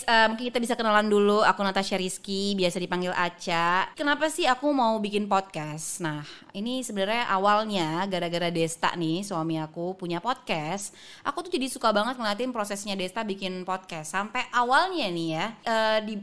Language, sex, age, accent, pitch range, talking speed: Indonesian, female, 20-39, native, 180-230 Hz, 165 wpm